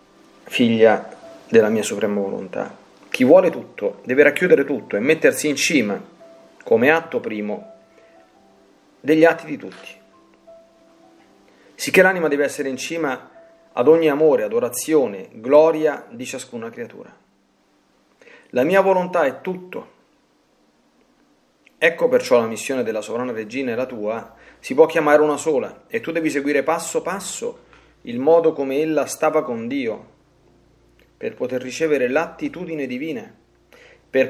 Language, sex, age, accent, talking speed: Italian, male, 40-59, native, 130 wpm